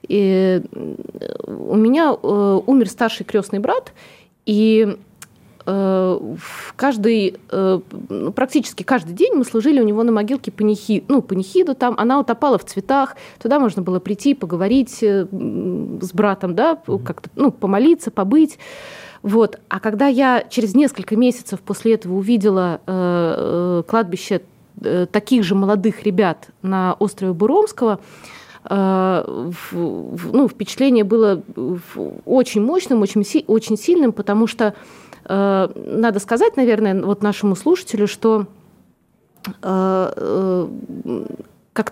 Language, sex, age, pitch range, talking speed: Russian, female, 20-39, 195-245 Hz, 115 wpm